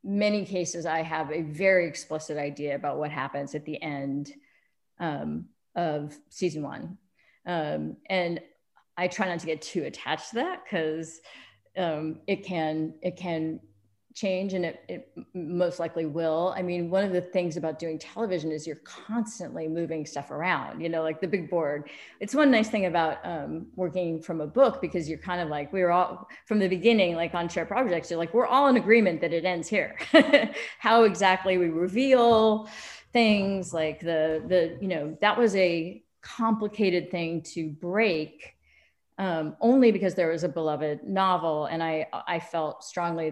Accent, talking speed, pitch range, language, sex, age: American, 175 wpm, 160-200 Hz, English, female, 40-59